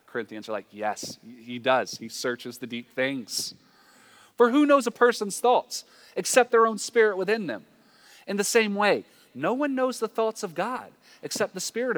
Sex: male